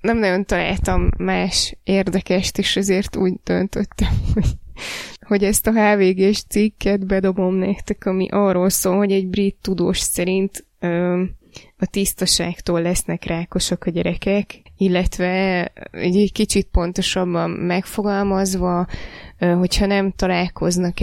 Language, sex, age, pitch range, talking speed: Hungarian, female, 20-39, 170-190 Hz, 110 wpm